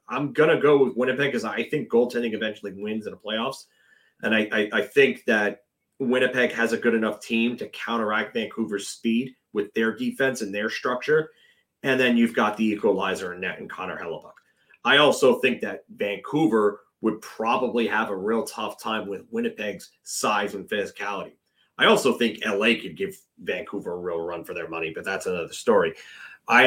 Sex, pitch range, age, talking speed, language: male, 115-145 Hz, 30-49, 185 wpm, English